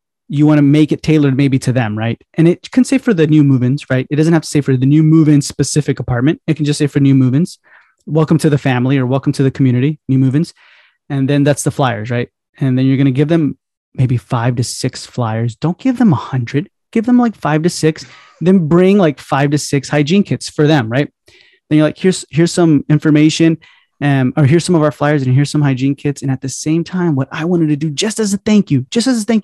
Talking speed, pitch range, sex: 255 wpm, 135-165 Hz, male